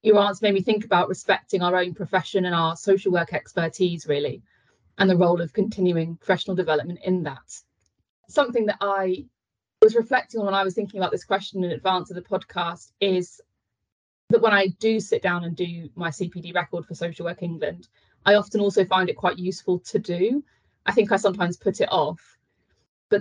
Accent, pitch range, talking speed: British, 165-195 Hz, 195 wpm